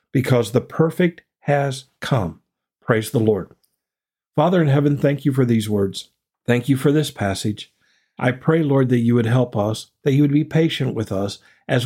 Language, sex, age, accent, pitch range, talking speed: English, male, 50-69, American, 115-145 Hz, 185 wpm